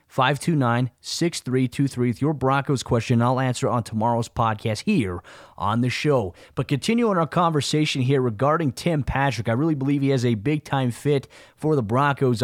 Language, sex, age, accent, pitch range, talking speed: English, male, 20-39, American, 115-135 Hz, 165 wpm